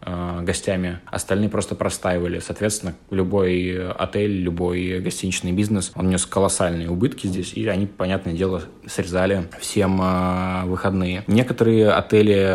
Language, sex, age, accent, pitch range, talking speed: Russian, male, 20-39, native, 90-105 Hz, 115 wpm